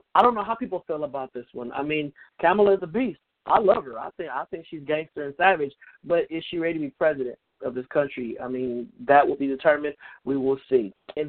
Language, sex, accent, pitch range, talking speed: English, male, American, 150-195 Hz, 245 wpm